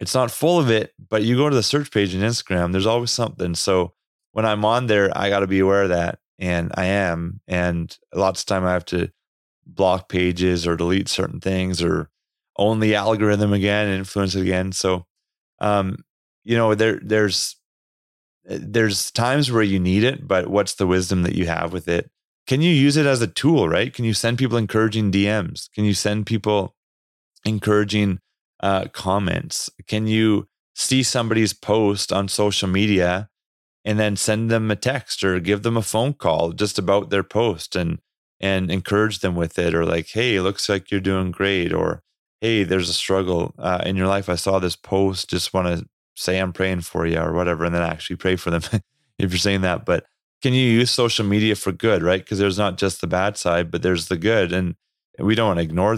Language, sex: English, male